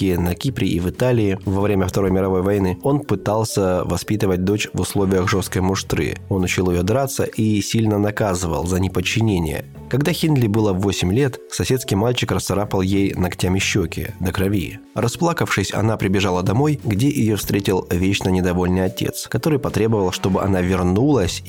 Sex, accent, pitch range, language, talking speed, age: male, native, 95-115 Hz, Russian, 155 wpm, 20-39